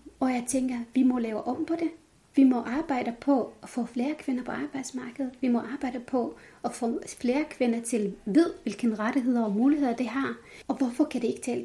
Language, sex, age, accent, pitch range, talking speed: Danish, female, 30-49, native, 220-270 Hz, 210 wpm